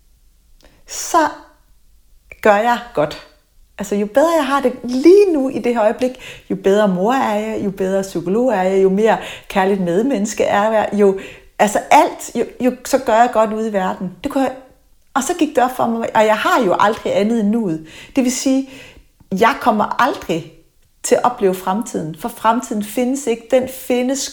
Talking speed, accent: 190 wpm, native